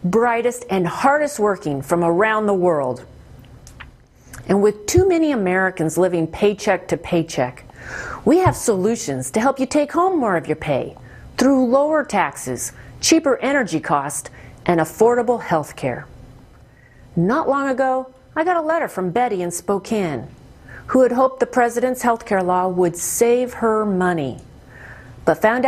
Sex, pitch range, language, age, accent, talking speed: female, 165-235 Hz, English, 40-59, American, 150 wpm